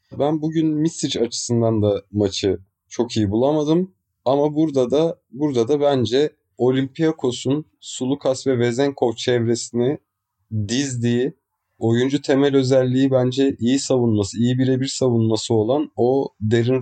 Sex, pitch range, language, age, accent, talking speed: male, 110-135 Hz, Turkish, 30-49, native, 120 wpm